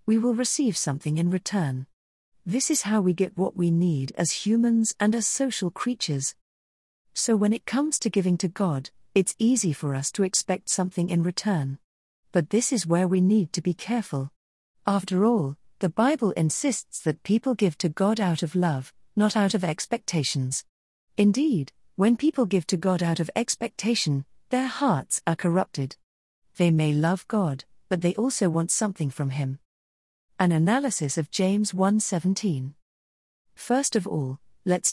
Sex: female